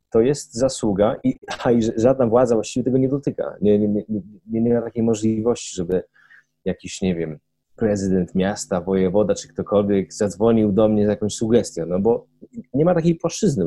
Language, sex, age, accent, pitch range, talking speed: Polish, male, 30-49, native, 105-130 Hz, 180 wpm